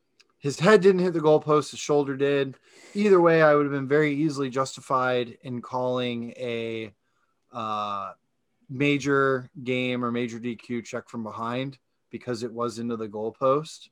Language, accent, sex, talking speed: English, American, male, 155 wpm